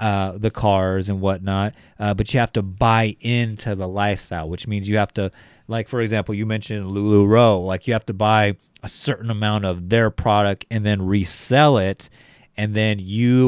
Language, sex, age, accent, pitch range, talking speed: English, male, 30-49, American, 95-115 Hz, 190 wpm